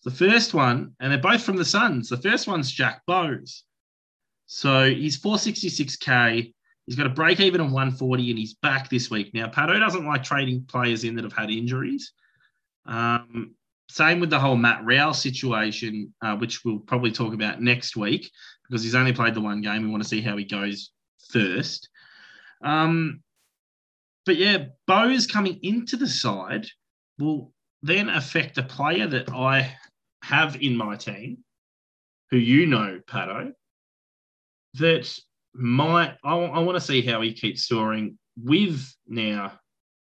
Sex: male